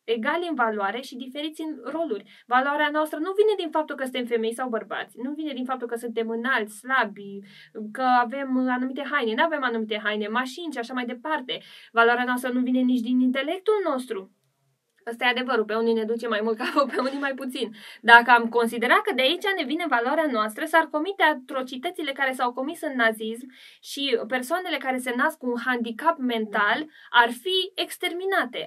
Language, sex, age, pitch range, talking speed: Romanian, female, 20-39, 235-315 Hz, 190 wpm